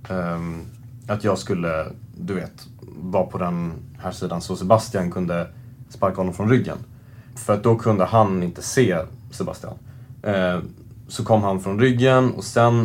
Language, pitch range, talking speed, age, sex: Swedish, 95-120 Hz, 150 wpm, 30-49, male